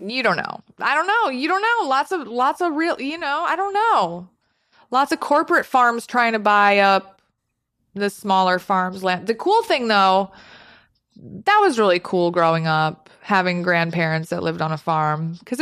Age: 20-39